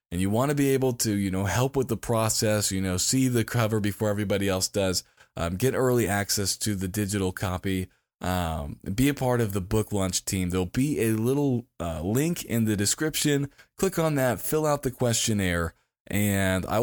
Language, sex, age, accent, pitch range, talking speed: English, male, 20-39, American, 95-130 Hz, 205 wpm